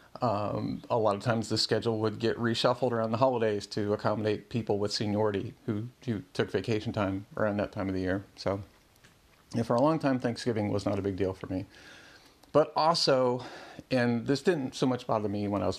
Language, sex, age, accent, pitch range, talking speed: English, male, 40-59, American, 105-125 Hz, 205 wpm